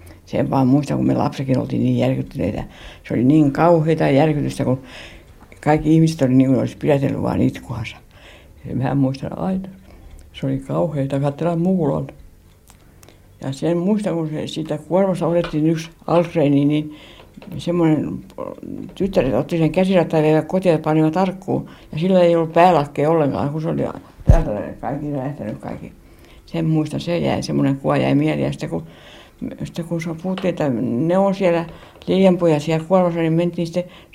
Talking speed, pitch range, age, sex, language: 155 wpm, 130-170 Hz, 60-79, female, Finnish